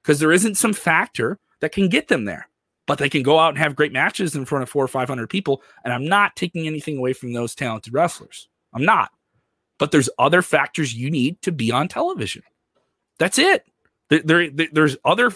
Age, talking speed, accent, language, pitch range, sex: 30-49, 210 wpm, American, English, 150-225 Hz, male